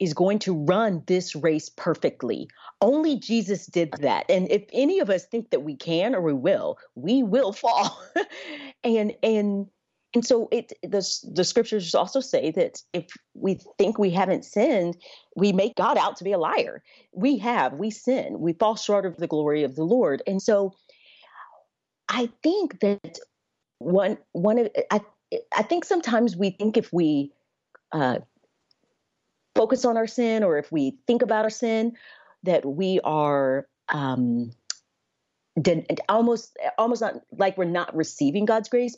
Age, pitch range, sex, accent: 40-59, 180-250 Hz, female, American